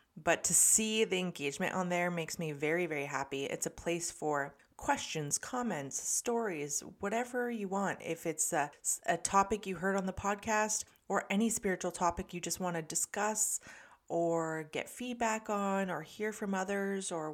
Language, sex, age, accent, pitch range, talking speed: English, female, 30-49, American, 160-200 Hz, 175 wpm